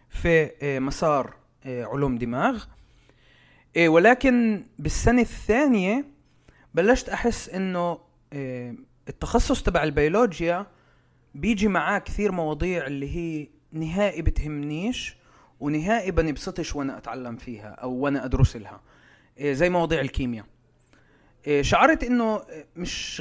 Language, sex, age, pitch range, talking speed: Arabic, male, 30-49, 135-190 Hz, 95 wpm